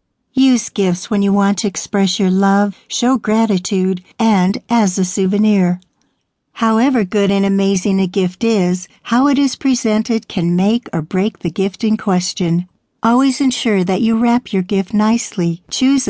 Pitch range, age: 185-235 Hz, 60-79